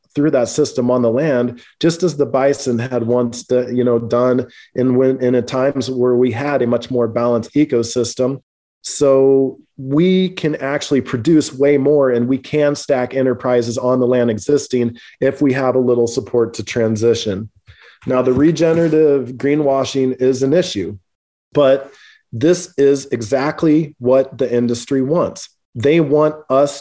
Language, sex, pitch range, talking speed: English, male, 125-150 Hz, 155 wpm